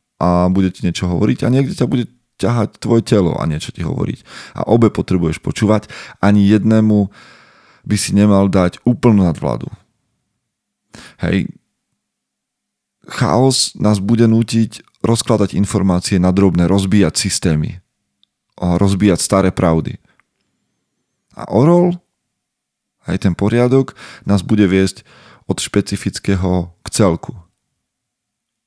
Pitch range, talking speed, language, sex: 90-110 Hz, 115 wpm, Slovak, male